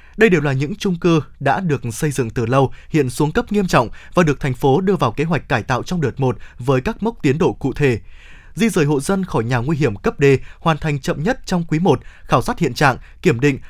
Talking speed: 265 wpm